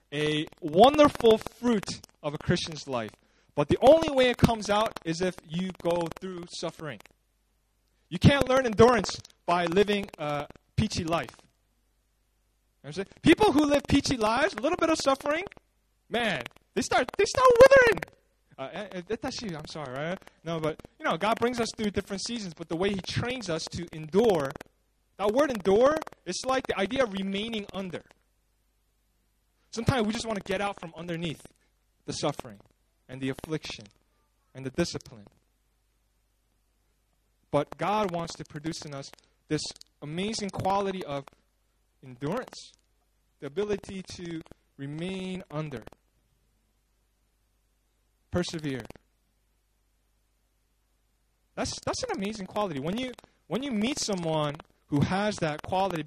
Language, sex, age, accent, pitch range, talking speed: English, male, 20-39, American, 120-205 Hz, 140 wpm